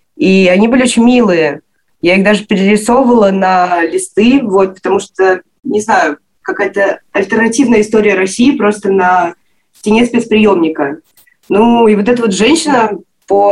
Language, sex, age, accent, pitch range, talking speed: Russian, female, 20-39, native, 185-220 Hz, 135 wpm